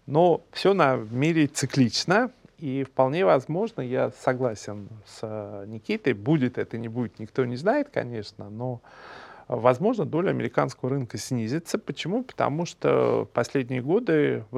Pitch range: 115-145 Hz